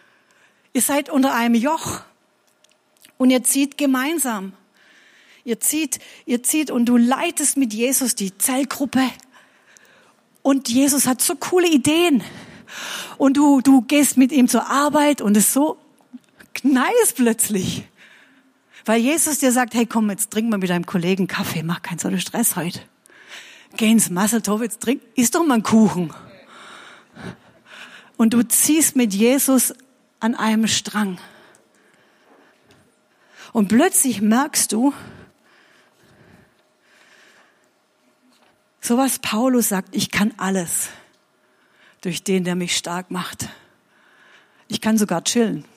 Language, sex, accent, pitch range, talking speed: German, female, German, 205-265 Hz, 125 wpm